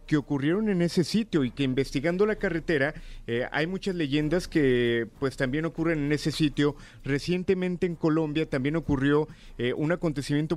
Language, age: Spanish, 40-59